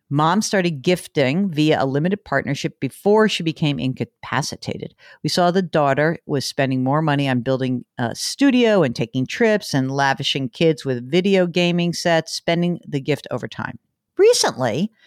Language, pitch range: English, 140-200 Hz